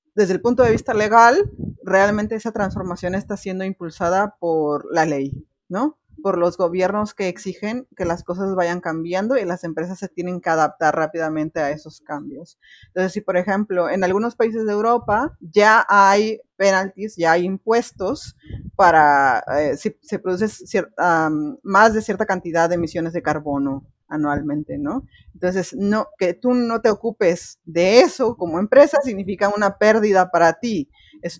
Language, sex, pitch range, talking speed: Spanish, female, 175-220 Hz, 165 wpm